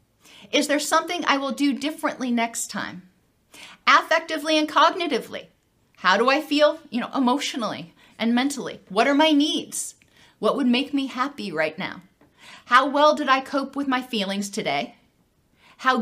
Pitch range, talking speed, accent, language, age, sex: 225-295 Hz, 155 wpm, American, English, 40-59, female